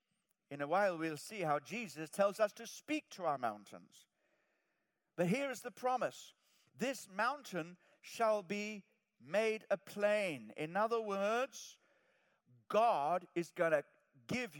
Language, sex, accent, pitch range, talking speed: English, male, British, 155-225 Hz, 140 wpm